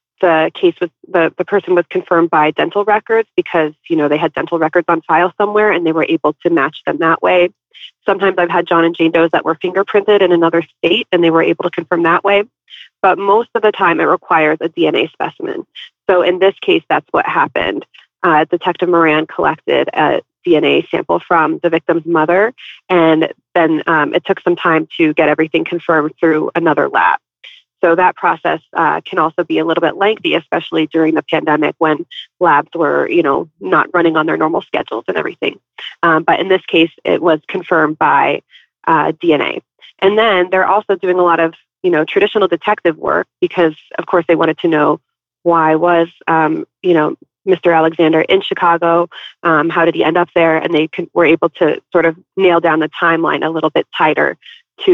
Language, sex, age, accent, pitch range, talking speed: English, female, 30-49, American, 160-190 Hz, 200 wpm